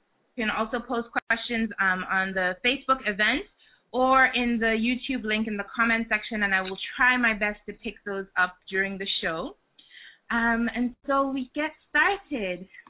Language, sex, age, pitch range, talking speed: English, female, 20-39, 205-245 Hz, 175 wpm